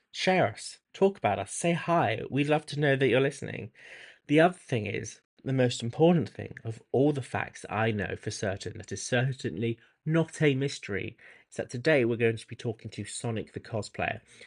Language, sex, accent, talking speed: English, male, British, 200 wpm